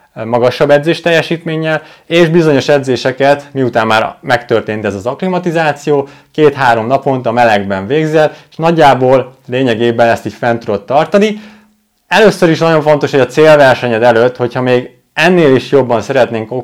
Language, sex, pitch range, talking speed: Hungarian, male, 115-155 Hz, 140 wpm